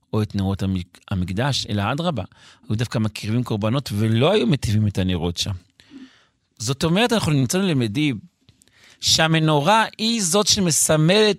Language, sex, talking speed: Hebrew, male, 135 wpm